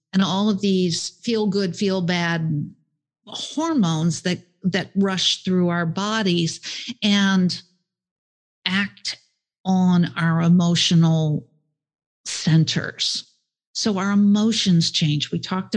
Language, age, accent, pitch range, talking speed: English, 50-69, American, 155-195 Hz, 105 wpm